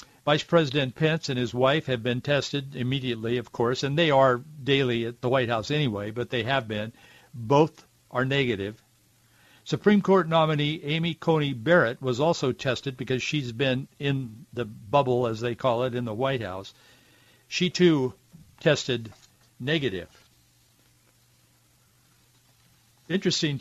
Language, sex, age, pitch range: English, male, 60-79, 120-140 Hz